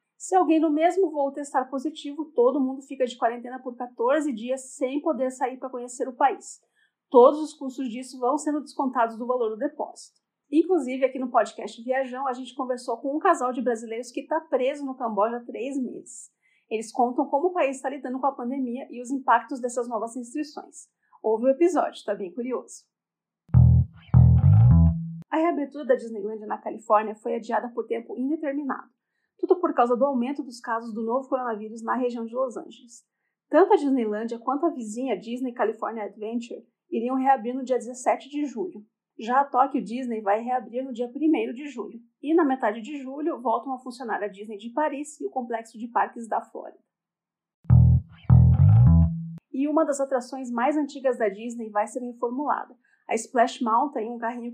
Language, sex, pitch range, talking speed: Portuguese, female, 230-280 Hz, 180 wpm